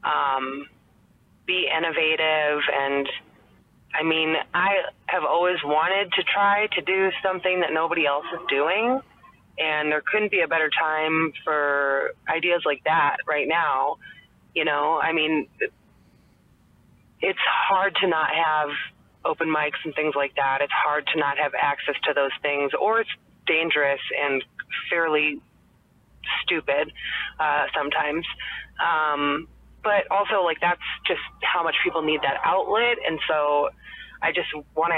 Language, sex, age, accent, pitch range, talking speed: English, female, 20-39, American, 145-170 Hz, 140 wpm